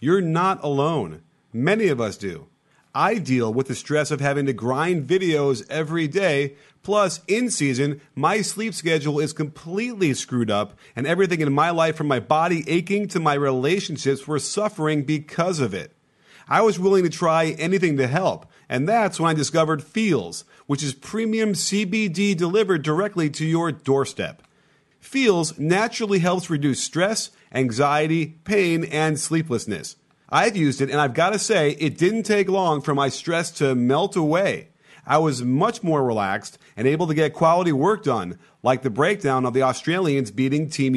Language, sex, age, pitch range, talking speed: English, male, 40-59, 140-195 Hz, 170 wpm